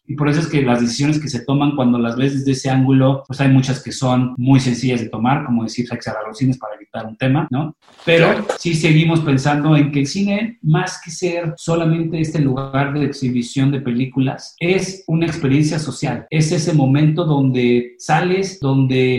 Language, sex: Spanish, male